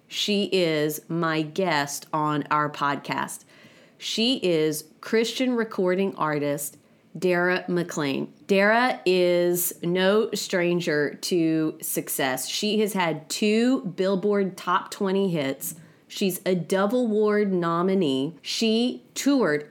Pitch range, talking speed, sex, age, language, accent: 165-215 Hz, 105 wpm, female, 30-49, English, American